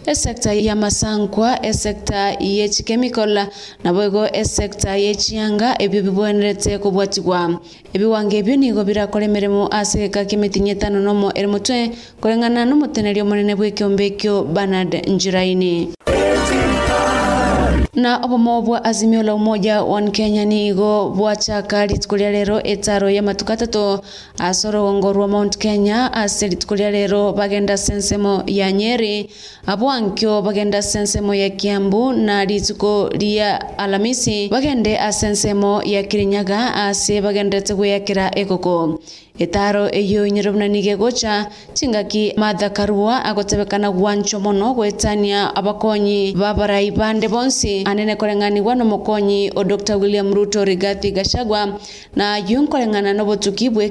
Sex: female